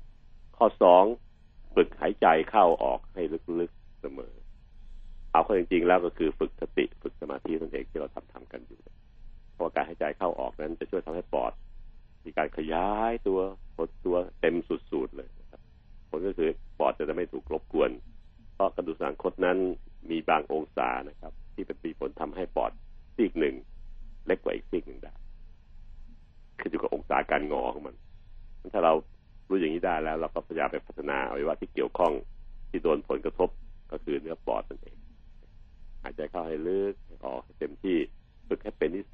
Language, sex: Thai, male